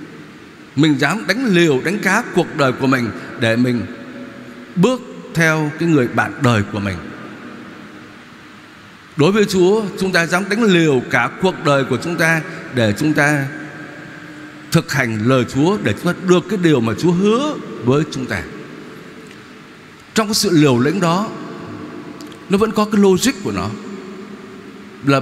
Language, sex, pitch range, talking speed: Vietnamese, male, 130-195 Hz, 160 wpm